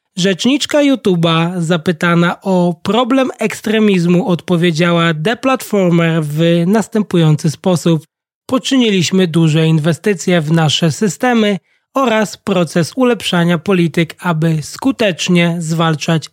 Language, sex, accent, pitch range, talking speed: Polish, male, native, 165-215 Hz, 90 wpm